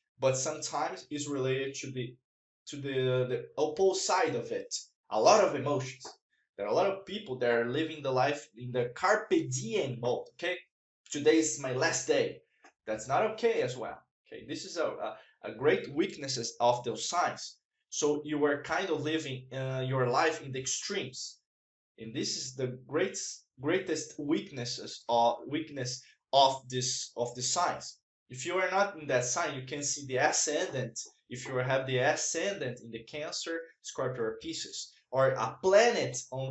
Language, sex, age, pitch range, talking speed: English, male, 20-39, 125-165 Hz, 180 wpm